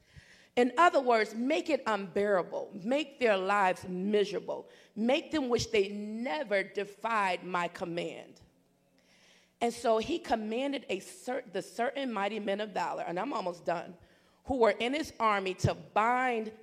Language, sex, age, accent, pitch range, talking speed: English, female, 40-59, American, 195-250 Hz, 145 wpm